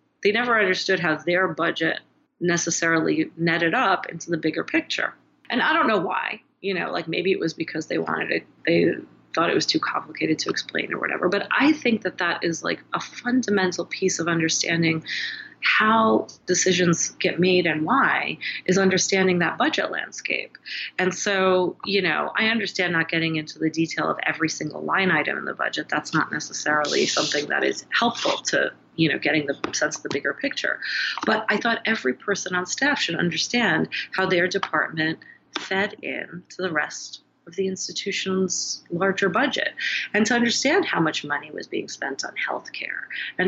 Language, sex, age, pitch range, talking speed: English, female, 30-49, 170-230 Hz, 180 wpm